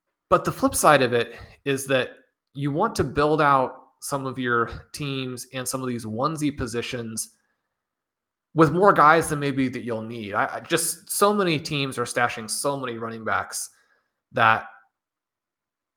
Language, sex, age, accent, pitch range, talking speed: English, male, 30-49, American, 115-145 Hz, 160 wpm